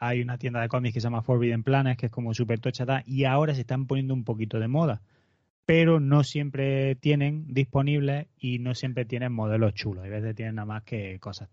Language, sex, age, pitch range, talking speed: Spanish, male, 20-39, 110-130 Hz, 220 wpm